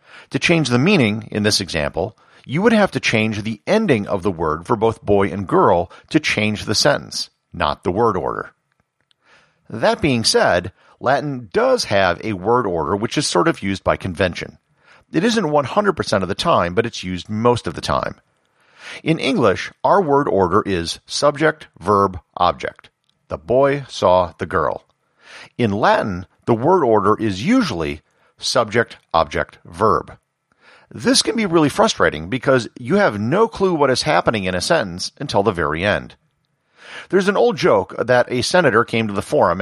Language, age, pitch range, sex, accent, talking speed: English, 50-69, 100-150 Hz, male, American, 175 wpm